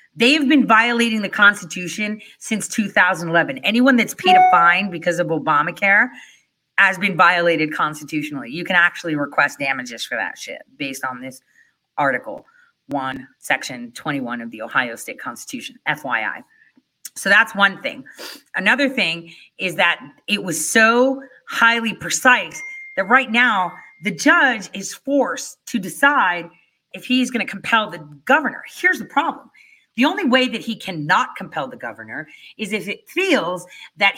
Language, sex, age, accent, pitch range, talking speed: English, female, 30-49, American, 175-260 Hz, 150 wpm